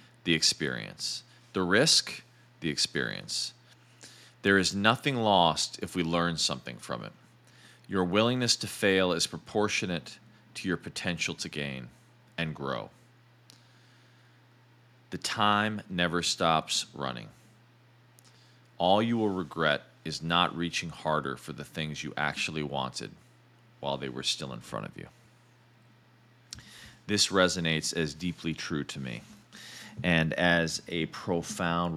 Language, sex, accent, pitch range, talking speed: English, male, American, 75-110 Hz, 125 wpm